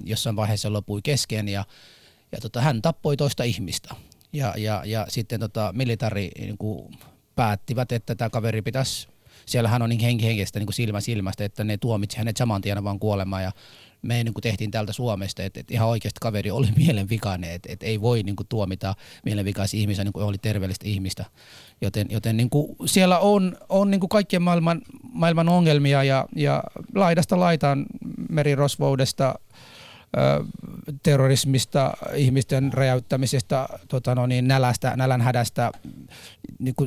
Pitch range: 105-130 Hz